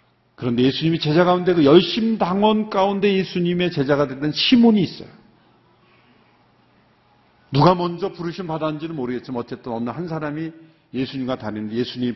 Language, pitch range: Korean, 125-160 Hz